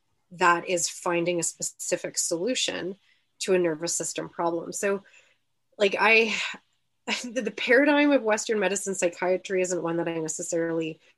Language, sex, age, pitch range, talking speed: English, female, 30-49, 165-190 Hz, 135 wpm